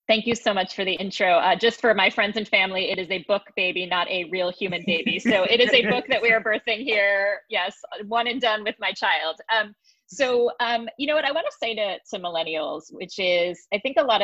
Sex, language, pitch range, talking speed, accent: female, English, 165-220 Hz, 255 wpm, American